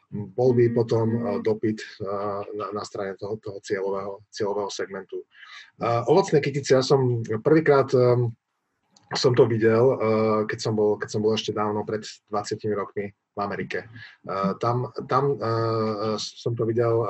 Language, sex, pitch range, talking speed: Slovak, male, 110-125 Hz, 130 wpm